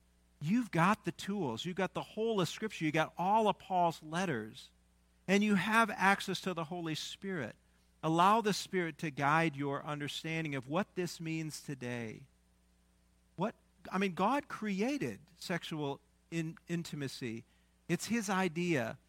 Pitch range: 120-175 Hz